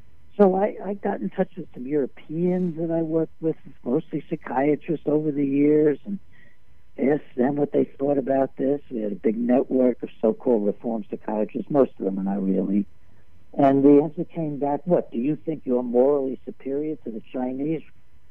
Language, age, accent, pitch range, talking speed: English, 60-79, American, 110-145 Hz, 185 wpm